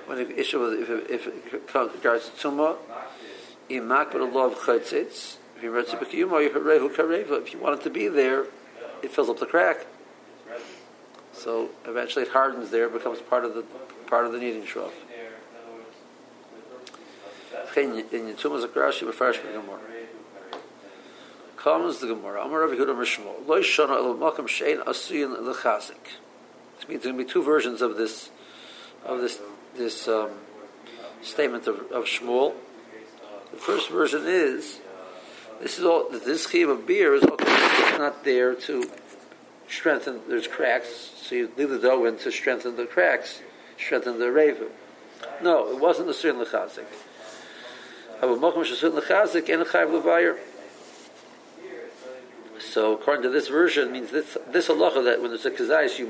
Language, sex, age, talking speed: English, male, 50-69, 115 wpm